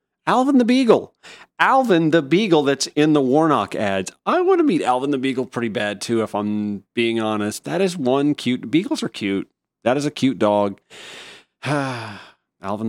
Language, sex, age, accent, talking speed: English, male, 40-59, American, 175 wpm